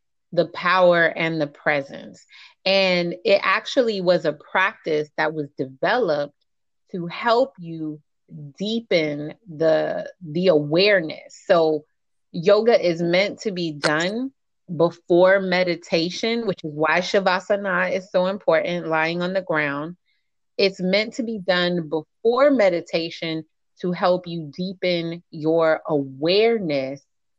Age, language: 30-49, English